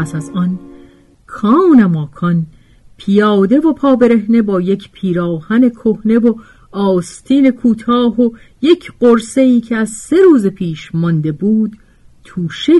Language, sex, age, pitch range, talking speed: Persian, female, 40-59, 165-240 Hz, 125 wpm